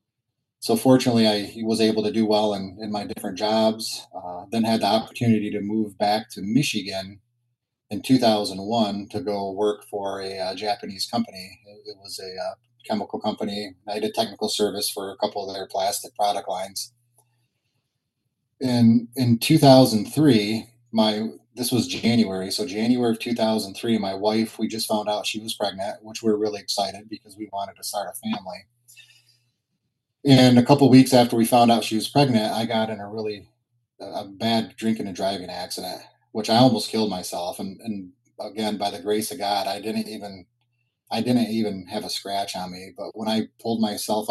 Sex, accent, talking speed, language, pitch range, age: male, American, 180 wpm, English, 105-120 Hz, 20-39